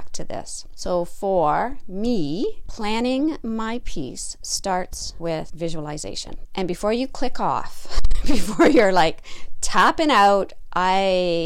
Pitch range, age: 165-220 Hz, 40-59